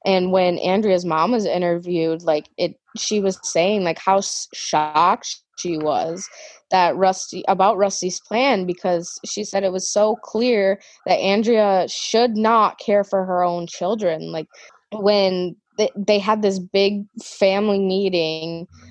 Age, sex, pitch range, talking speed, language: 20-39, female, 170-195 Hz, 145 wpm, English